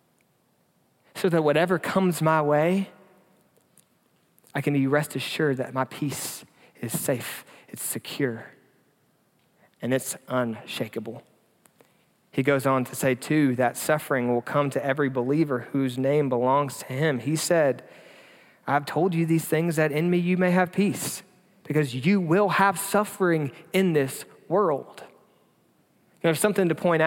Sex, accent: male, American